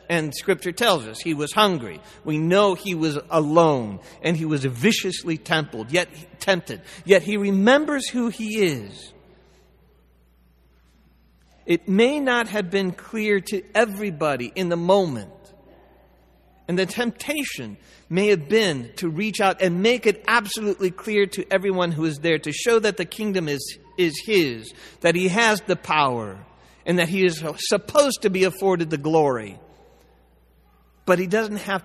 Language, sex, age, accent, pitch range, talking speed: English, male, 50-69, American, 155-210 Hz, 150 wpm